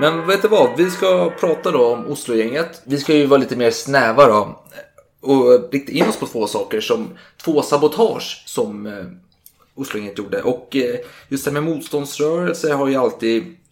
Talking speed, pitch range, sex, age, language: 185 wpm, 115-145 Hz, male, 30-49, Swedish